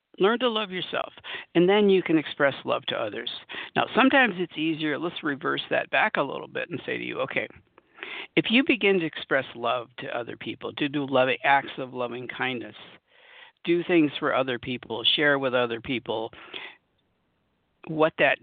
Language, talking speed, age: English, 180 wpm, 60-79